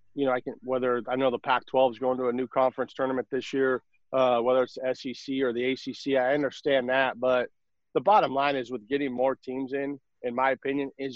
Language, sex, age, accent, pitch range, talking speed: English, male, 40-59, American, 120-135 Hz, 230 wpm